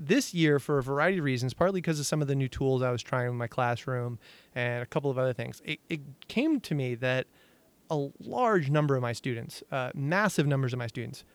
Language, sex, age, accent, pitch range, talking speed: English, male, 30-49, American, 125-150 Hz, 240 wpm